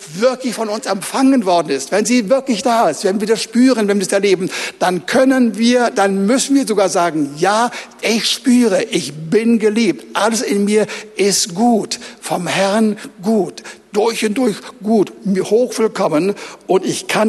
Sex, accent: male, German